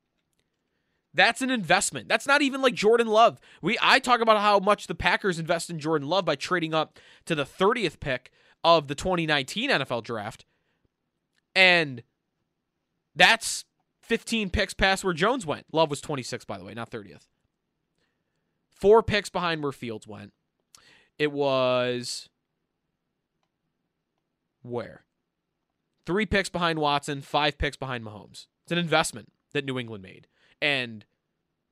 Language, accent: English, American